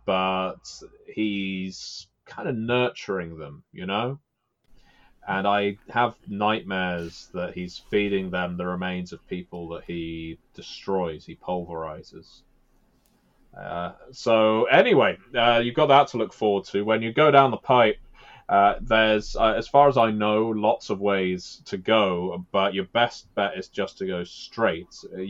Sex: male